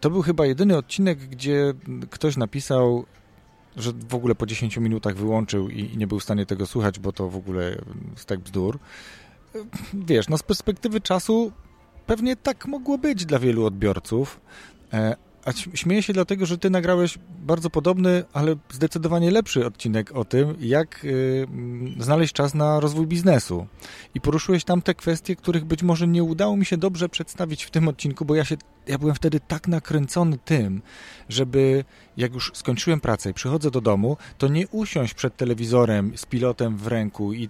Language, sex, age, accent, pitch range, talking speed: Polish, male, 40-59, native, 115-170 Hz, 170 wpm